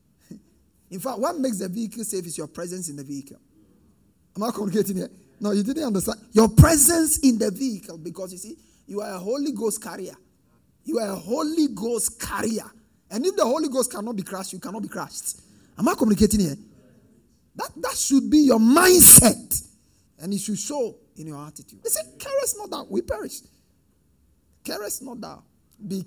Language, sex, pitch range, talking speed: English, male, 185-270 Hz, 195 wpm